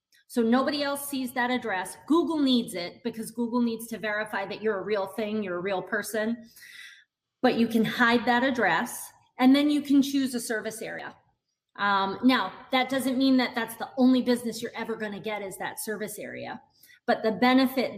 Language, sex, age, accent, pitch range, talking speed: English, female, 30-49, American, 200-245 Hz, 195 wpm